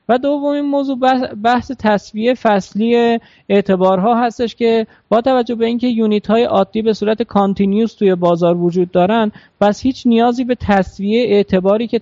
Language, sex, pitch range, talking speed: Persian, male, 185-235 Hz, 160 wpm